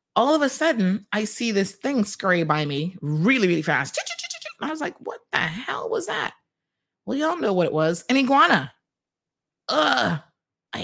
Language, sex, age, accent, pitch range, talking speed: English, female, 30-49, American, 180-300 Hz, 175 wpm